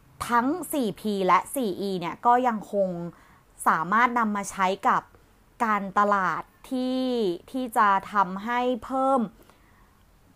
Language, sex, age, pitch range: Thai, female, 30-49, 190-235 Hz